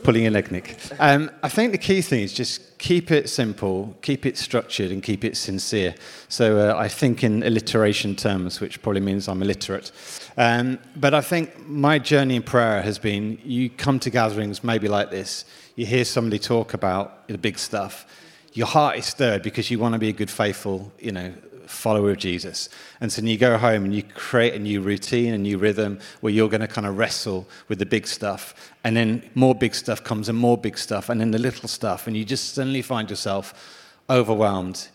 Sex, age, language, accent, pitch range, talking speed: male, 30-49, English, British, 100-125 Hz, 210 wpm